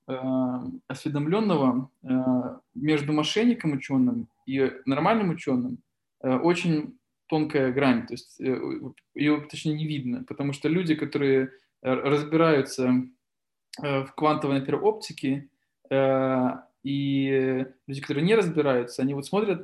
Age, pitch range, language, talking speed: 20-39, 130-155 Hz, Russian, 100 wpm